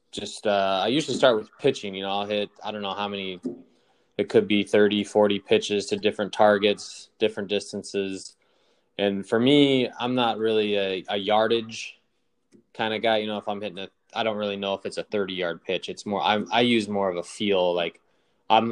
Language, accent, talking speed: English, American, 210 wpm